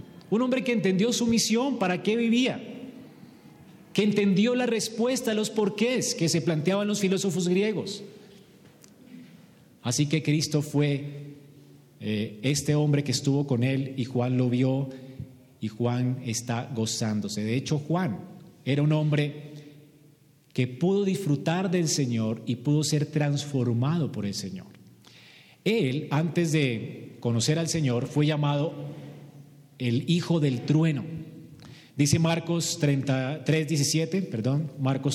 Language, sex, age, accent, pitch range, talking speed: Spanish, male, 40-59, Colombian, 135-175 Hz, 130 wpm